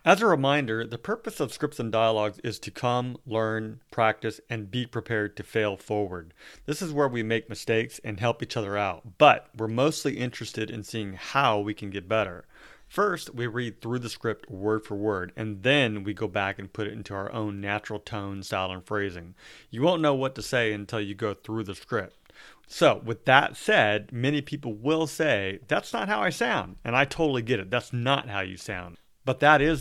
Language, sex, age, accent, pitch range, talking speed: English, male, 40-59, American, 105-140 Hz, 210 wpm